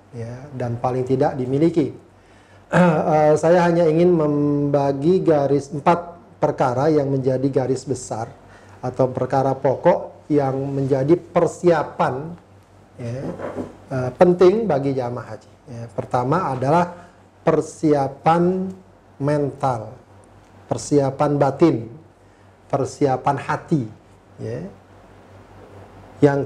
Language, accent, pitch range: Indonesian, native, 115-150 Hz